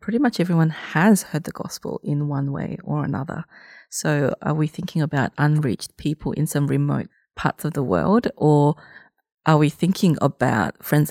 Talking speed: 175 wpm